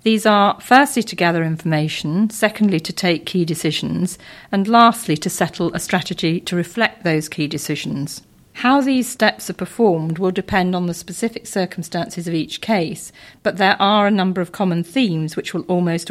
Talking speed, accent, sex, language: 175 wpm, British, female, English